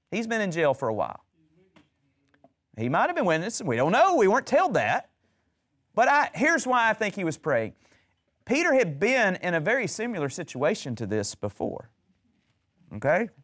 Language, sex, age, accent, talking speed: English, male, 30-49, American, 180 wpm